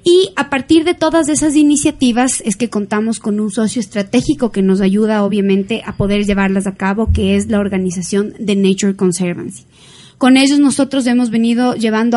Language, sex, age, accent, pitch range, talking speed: Spanish, female, 20-39, Mexican, 205-245 Hz, 180 wpm